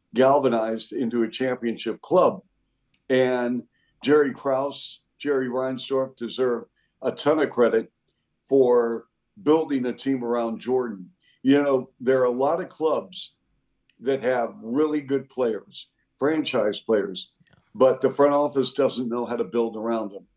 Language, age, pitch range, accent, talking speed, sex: English, 60-79, 120-140 Hz, American, 140 wpm, male